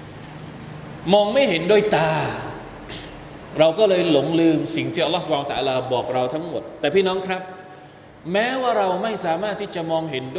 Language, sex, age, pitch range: Thai, male, 20-39, 145-195 Hz